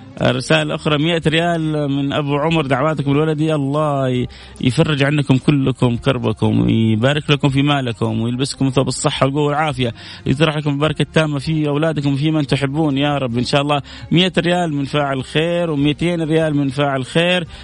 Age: 30-49